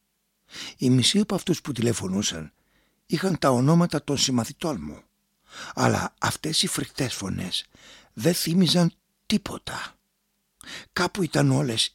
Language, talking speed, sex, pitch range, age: Greek, 115 wpm, male, 115-170 Hz, 60-79